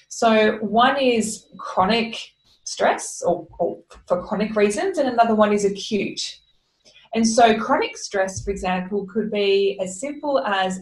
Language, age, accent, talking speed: English, 20-39, Australian, 145 wpm